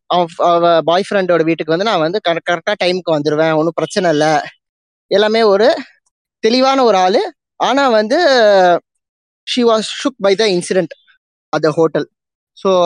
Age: 20-39